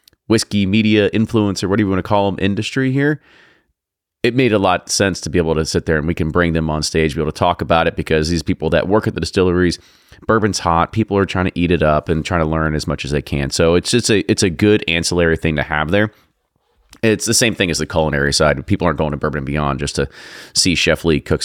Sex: male